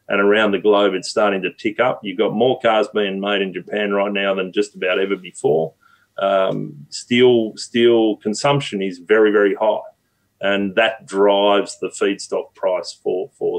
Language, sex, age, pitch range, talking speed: English, male, 30-49, 100-130 Hz, 175 wpm